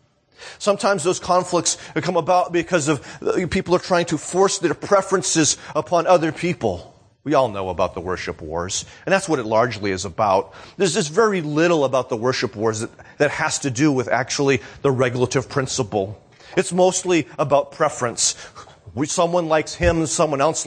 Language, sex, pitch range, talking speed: English, male, 115-155 Hz, 170 wpm